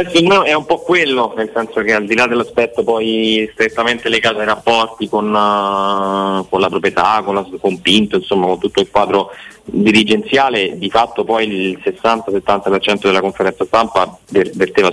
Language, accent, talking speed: Italian, native, 165 wpm